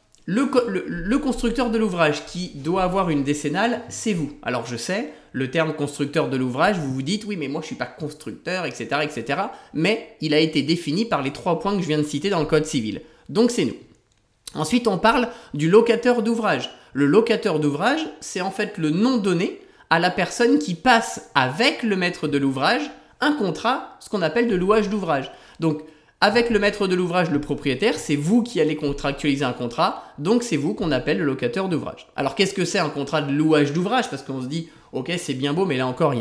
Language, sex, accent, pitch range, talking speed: French, male, French, 155-230 Hz, 220 wpm